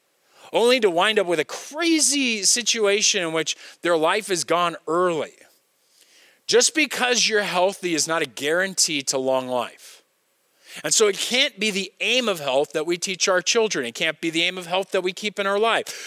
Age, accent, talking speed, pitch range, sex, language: 40-59, American, 200 wpm, 170-235 Hz, male, English